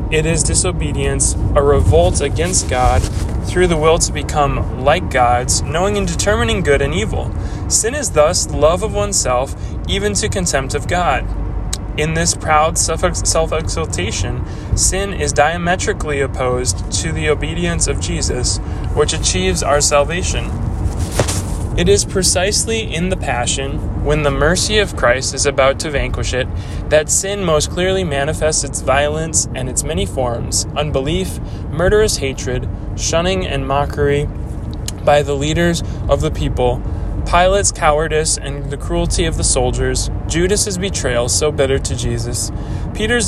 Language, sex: English, male